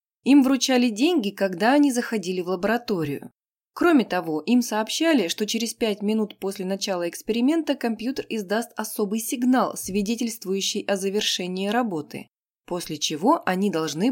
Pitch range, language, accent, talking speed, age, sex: 180-240 Hz, Russian, native, 130 wpm, 20-39, female